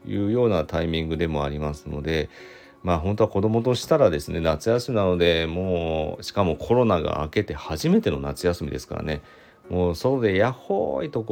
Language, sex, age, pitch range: Japanese, male, 40-59, 85-110 Hz